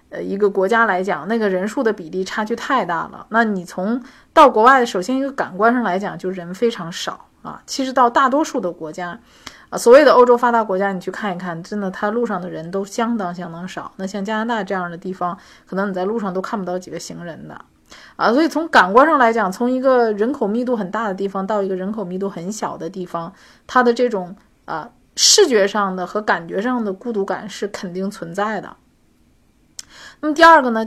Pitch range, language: 185-240 Hz, Chinese